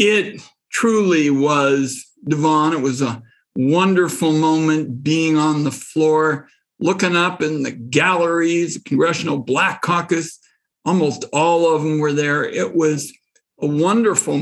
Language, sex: English, male